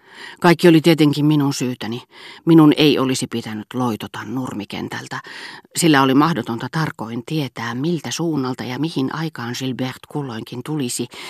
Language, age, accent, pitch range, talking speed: Finnish, 40-59, native, 125-155 Hz, 125 wpm